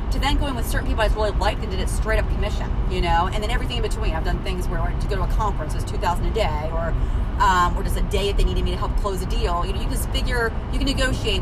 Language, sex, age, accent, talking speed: English, female, 30-49, American, 325 wpm